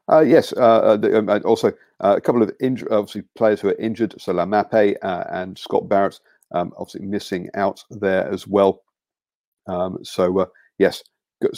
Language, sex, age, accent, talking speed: English, male, 50-69, British, 160 wpm